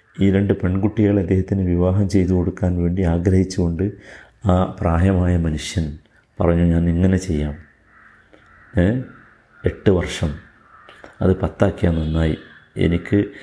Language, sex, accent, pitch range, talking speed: Malayalam, male, native, 90-110 Hz, 100 wpm